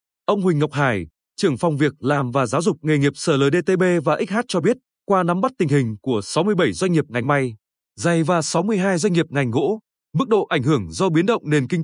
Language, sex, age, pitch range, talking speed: Vietnamese, male, 20-39, 145-195 Hz, 230 wpm